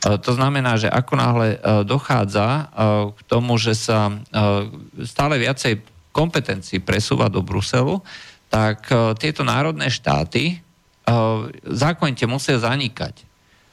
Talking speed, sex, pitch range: 105 wpm, male, 105-125 Hz